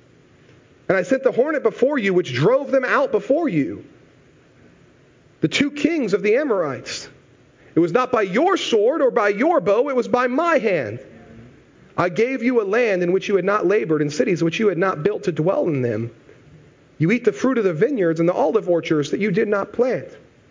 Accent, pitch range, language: American, 170-265 Hz, English